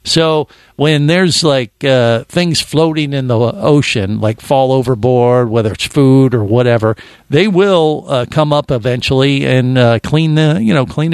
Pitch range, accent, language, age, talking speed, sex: 120-150 Hz, American, English, 50-69, 165 wpm, male